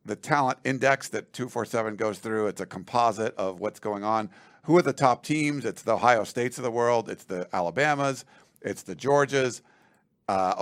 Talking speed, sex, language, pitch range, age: 185 wpm, male, English, 110-140 Hz, 50-69